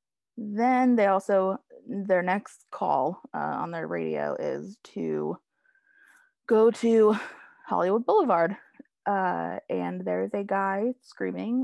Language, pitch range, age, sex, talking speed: English, 185-235 Hz, 20-39, female, 115 wpm